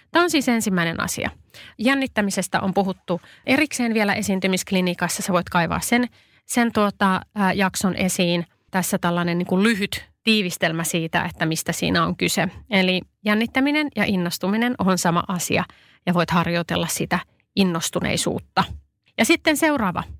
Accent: native